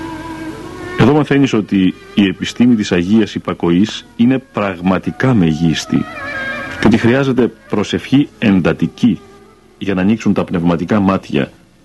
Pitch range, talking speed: 85-125 Hz, 105 wpm